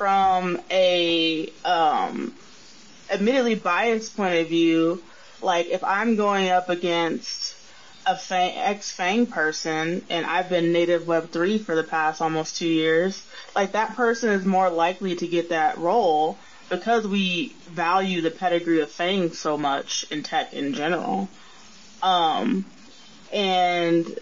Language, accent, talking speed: English, American, 135 wpm